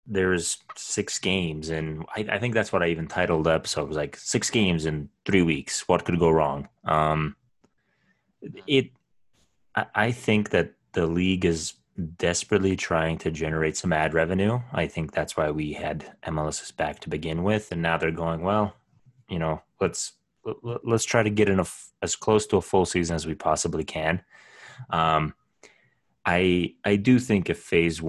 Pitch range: 80-105 Hz